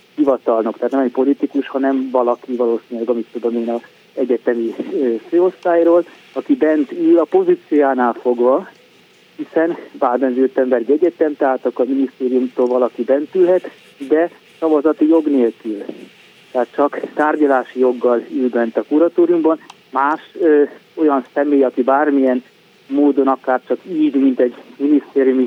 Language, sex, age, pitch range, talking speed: Hungarian, male, 30-49, 125-155 Hz, 135 wpm